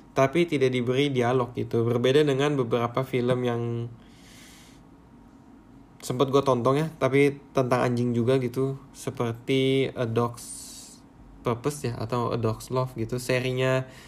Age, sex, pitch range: 20-39, male, 120-155 Hz